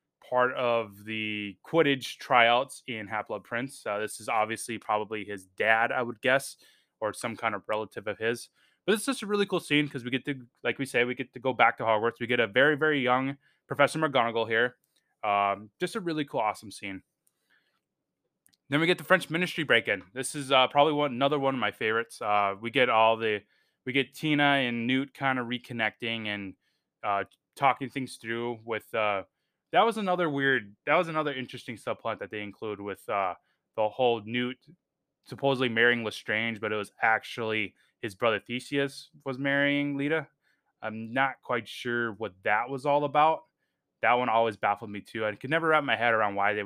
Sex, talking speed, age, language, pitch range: male, 195 wpm, 20-39, English, 110-140 Hz